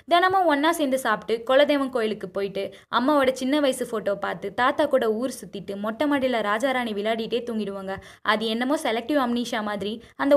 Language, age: Tamil, 20-39